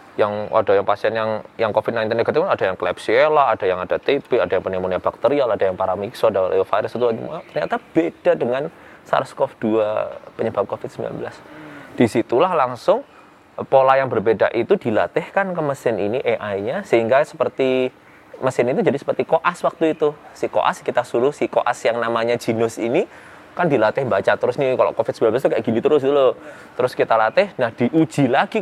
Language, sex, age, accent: Indonesian, male, 20-39, native